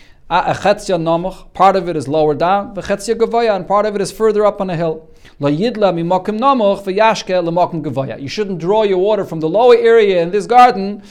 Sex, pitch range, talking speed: male, 145-195 Hz, 150 wpm